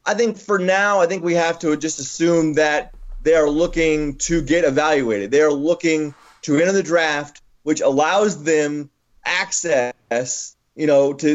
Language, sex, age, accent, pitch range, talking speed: English, male, 30-49, American, 150-185 Hz, 170 wpm